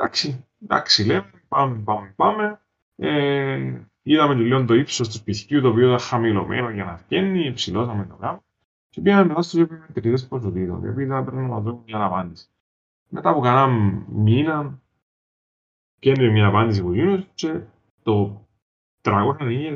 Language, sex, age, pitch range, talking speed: Greek, male, 20-39, 100-140 Hz, 150 wpm